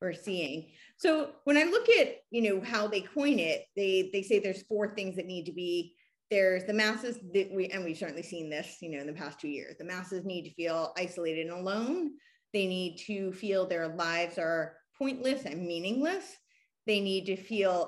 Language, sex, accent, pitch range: English, female, American, 170-230 Hz